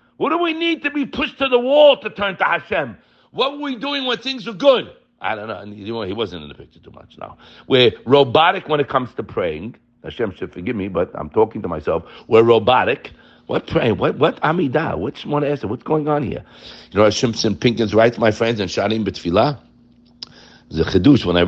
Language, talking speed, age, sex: English, 205 wpm, 60-79, male